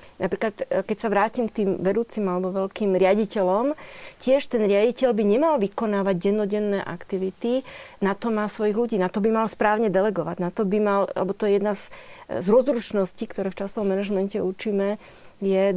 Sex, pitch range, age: female, 195-230 Hz, 30-49